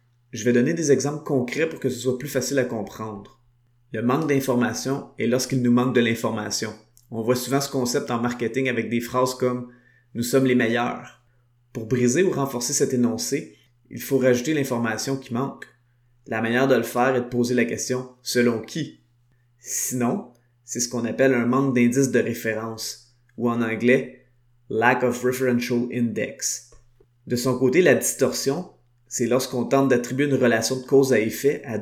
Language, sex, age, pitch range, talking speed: French, male, 30-49, 120-130 Hz, 180 wpm